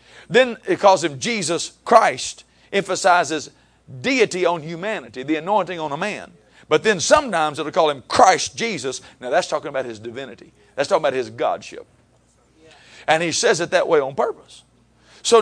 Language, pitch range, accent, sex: English, 150-250 Hz, American, male